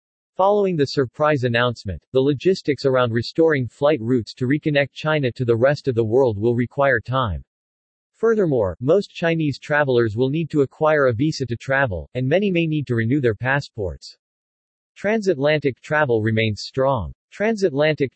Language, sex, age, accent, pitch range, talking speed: English, male, 40-59, American, 120-150 Hz, 155 wpm